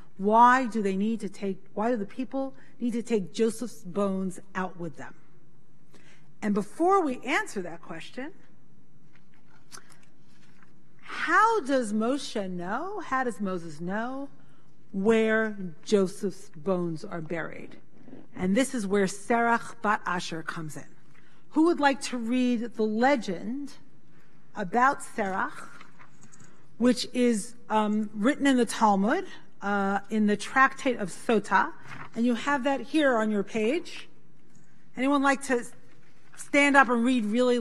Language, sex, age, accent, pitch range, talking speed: English, female, 40-59, American, 185-255 Hz, 135 wpm